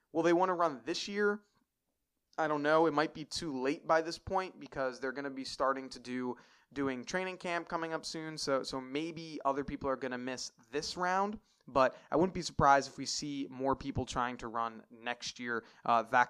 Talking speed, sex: 220 wpm, male